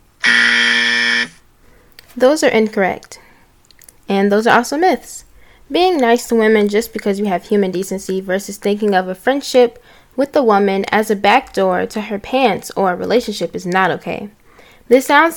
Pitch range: 195-240 Hz